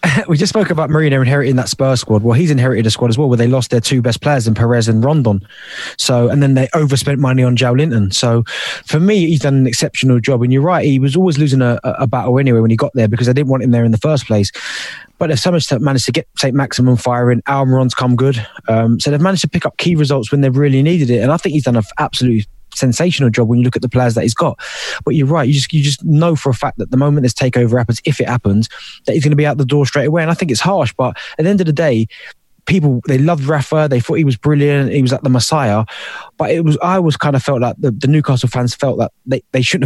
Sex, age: male, 20-39